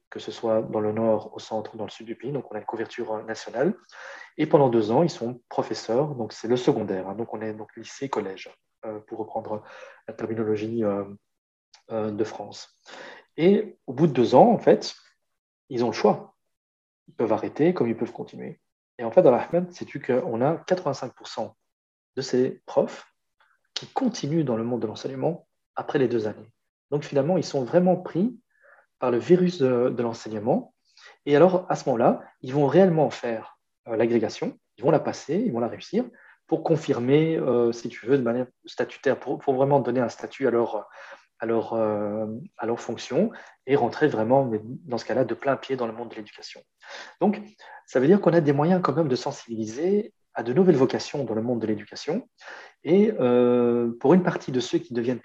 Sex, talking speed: male, 200 wpm